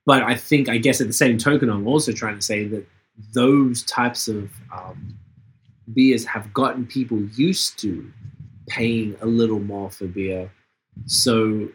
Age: 20-39